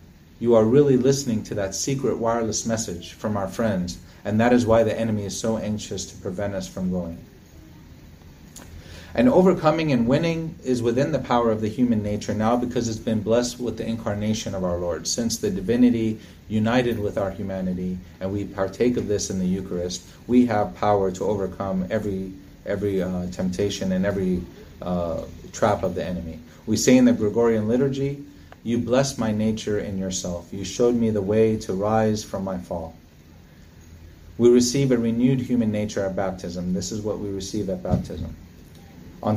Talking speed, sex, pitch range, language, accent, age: 180 wpm, male, 90-115 Hz, English, American, 30-49